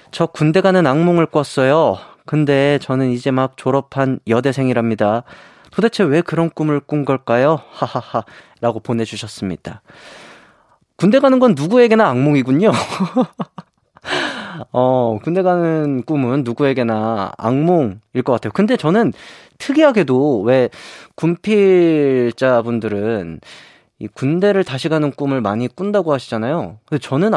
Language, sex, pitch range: Korean, male, 125-180 Hz